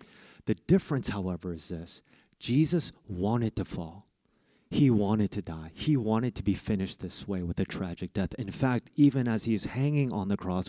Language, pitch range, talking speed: English, 105-140 Hz, 190 wpm